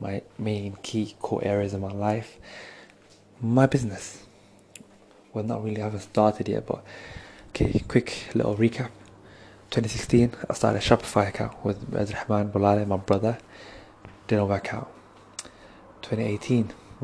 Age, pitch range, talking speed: 20-39, 100-115 Hz, 125 wpm